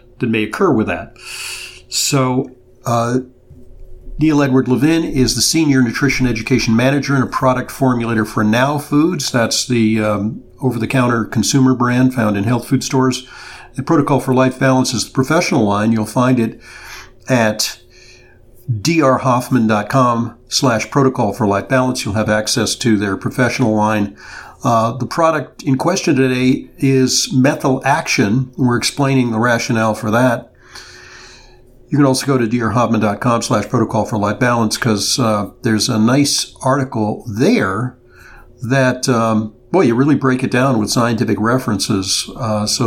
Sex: male